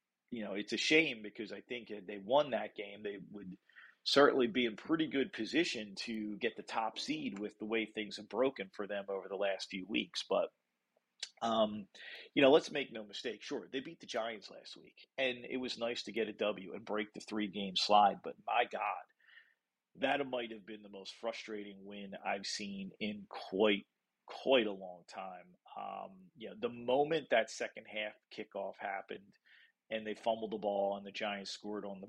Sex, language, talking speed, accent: male, English, 200 wpm, American